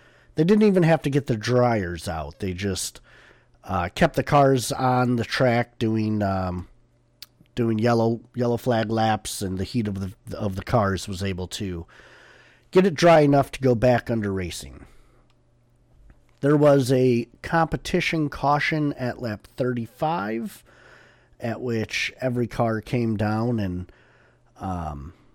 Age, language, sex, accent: 40-59, English, male, American